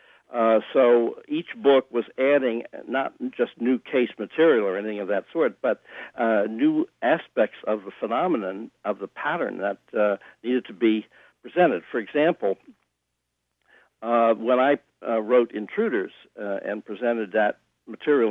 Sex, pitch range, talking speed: male, 110-130 Hz, 150 wpm